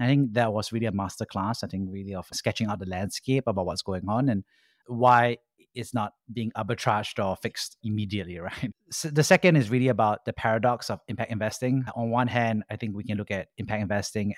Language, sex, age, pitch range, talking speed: English, male, 30-49, 105-125 Hz, 210 wpm